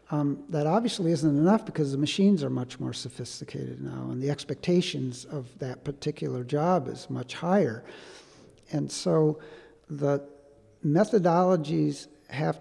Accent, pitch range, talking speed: American, 130-165 Hz, 135 wpm